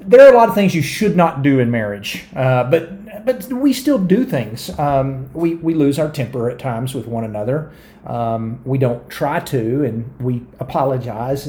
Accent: American